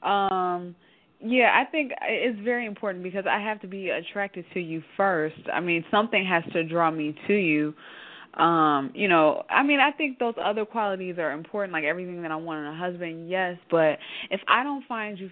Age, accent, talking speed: 20-39, American, 205 wpm